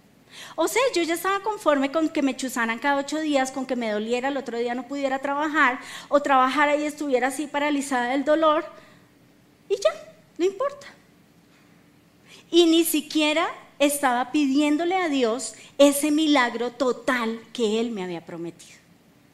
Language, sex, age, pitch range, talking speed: Spanish, female, 30-49, 250-325 Hz, 155 wpm